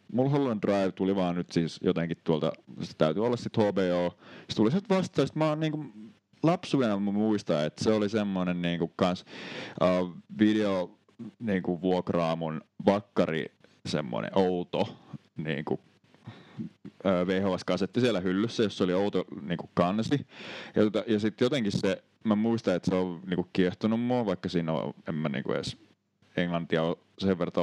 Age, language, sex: 30-49, Finnish, male